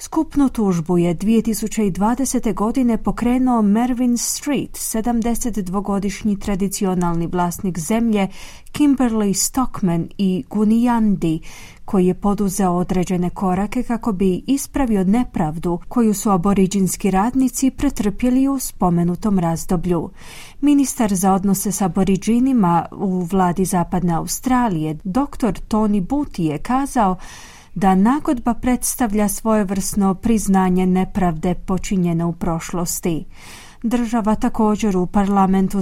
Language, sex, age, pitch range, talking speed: Croatian, female, 30-49, 185-245 Hz, 100 wpm